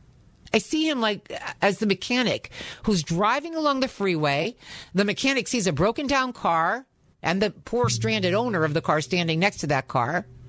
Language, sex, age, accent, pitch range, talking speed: English, female, 50-69, American, 180-255 Hz, 185 wpm